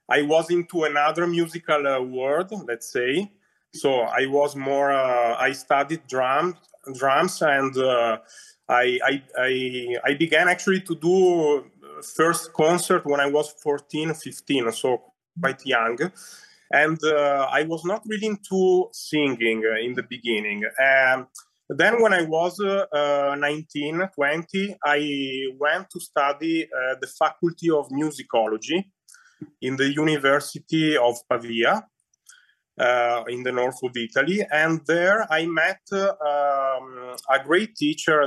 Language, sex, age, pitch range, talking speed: English, male, 30-49, 130-165 Hz, 135 wpm